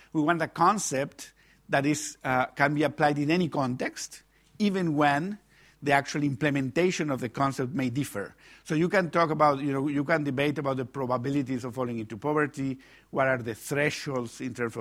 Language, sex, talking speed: English, male, 185 wpm